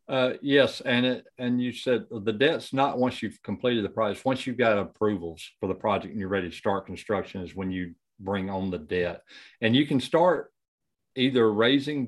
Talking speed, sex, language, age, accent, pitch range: 205 wpm, male, English, 50-69, American, 95-115 Hz